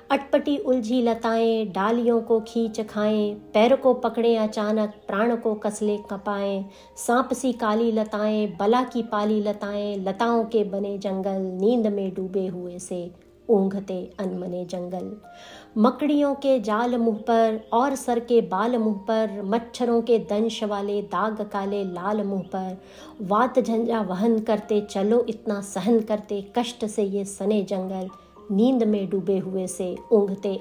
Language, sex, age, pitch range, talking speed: English, female, 50-69, 200-230 Hz, 120 wpm